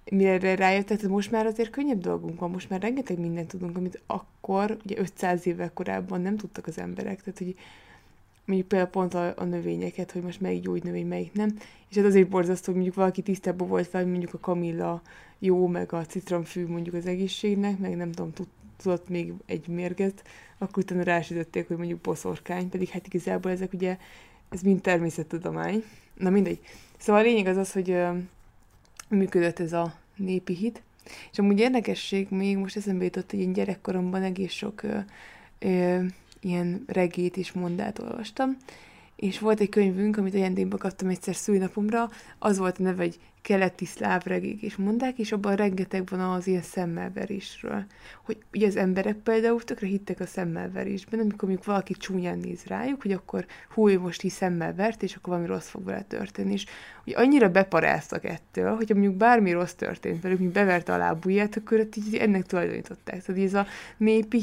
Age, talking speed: 20-39, 175 wpm